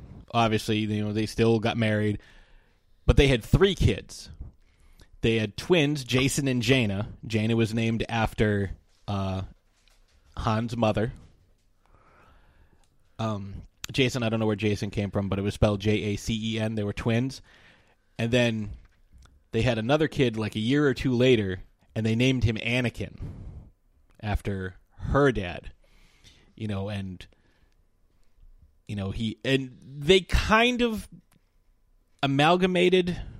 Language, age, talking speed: English, 30-49, 130 wpm